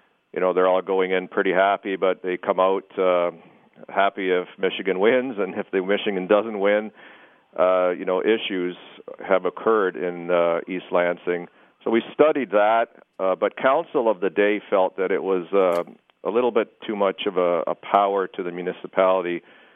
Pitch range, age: 90-105 Hz, 50-69